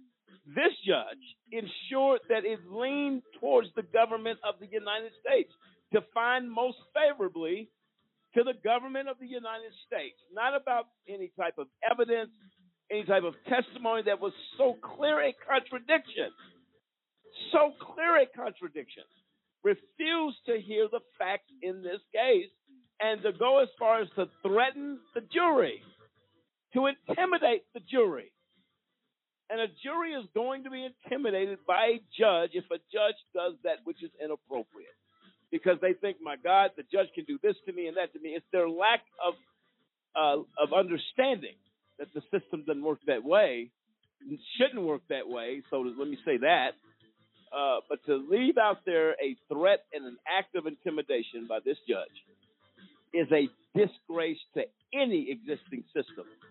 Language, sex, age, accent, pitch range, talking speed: English, male, 50-69, American, 180-270 Hz, 155 wpm